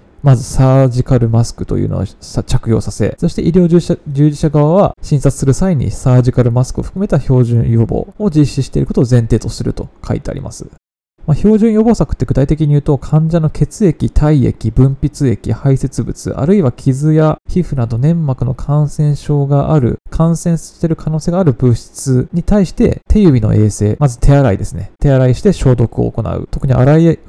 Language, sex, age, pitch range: Japanese, male, 20-39, 120-155 Hz